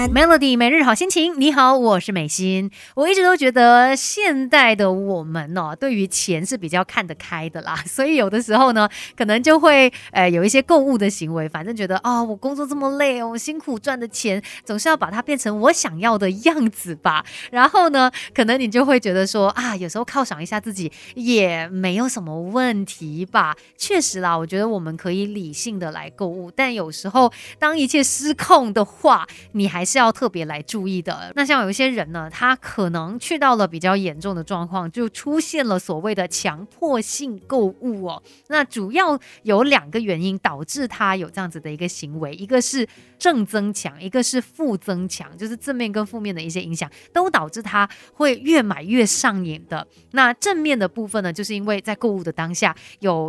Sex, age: female, 20-39